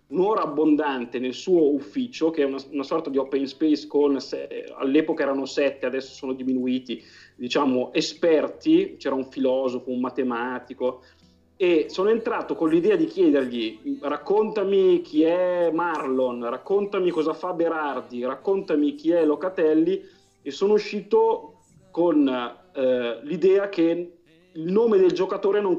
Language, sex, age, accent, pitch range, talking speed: Italian, male, 30-49, native, 130-175 Hz, 135 wpm